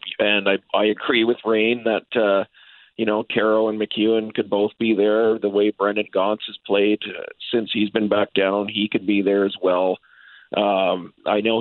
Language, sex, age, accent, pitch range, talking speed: English, male, 40-59, American, 95-110 Hz, 195 wpm